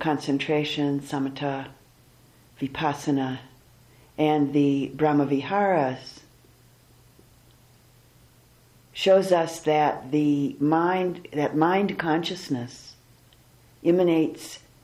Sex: female